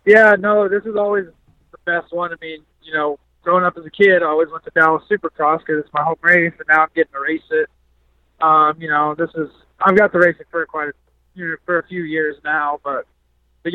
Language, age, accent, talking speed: English, 20-39, American, 250 wpm